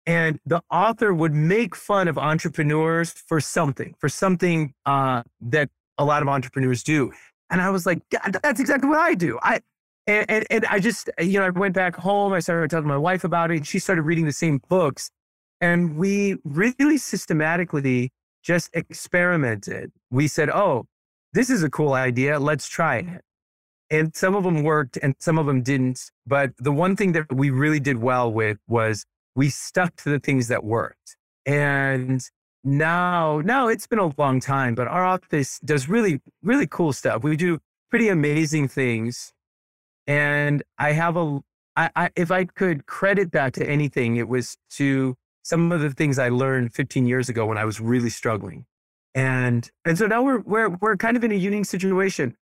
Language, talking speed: English, 190 wpm